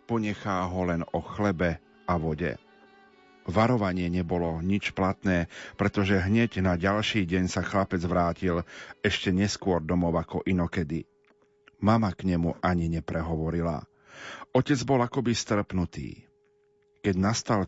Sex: male